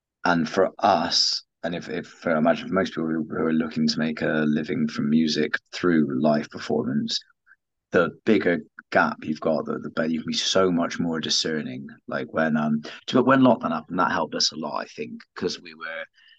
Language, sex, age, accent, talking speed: English, male, 30-49, British, 205 wpm